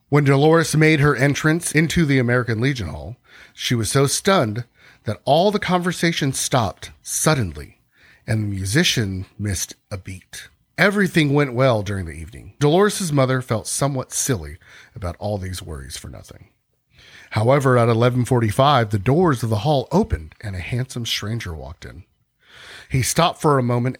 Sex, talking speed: male, 160 wpm